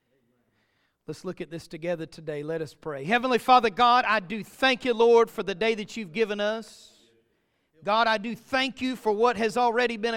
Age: 40-59